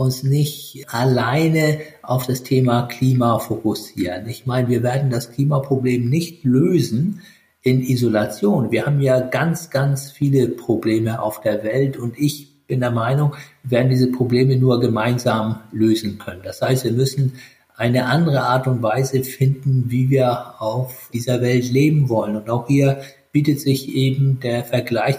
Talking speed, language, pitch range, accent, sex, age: 155 wpm, German, 120-140 Hz, German, male, 50-69